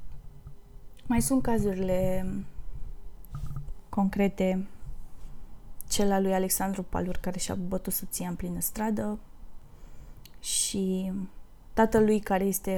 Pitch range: 185-210 Hz